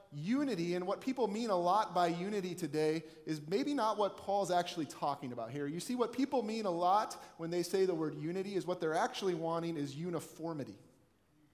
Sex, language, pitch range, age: male, English, 125-175 Hz, 30-49